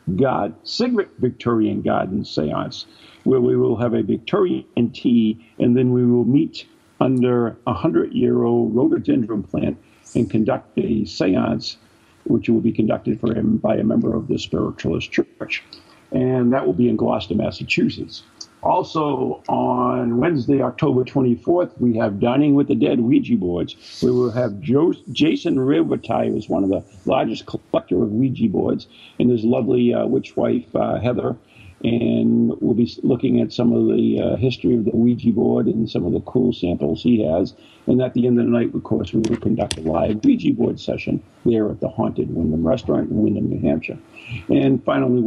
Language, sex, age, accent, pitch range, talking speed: English, male, 50-69, American, 115-125 Hz, 175 wpm